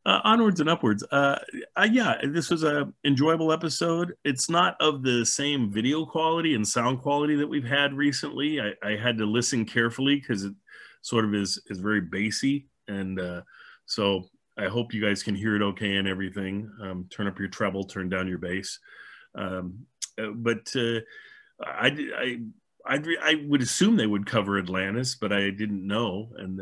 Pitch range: 100-145 Hz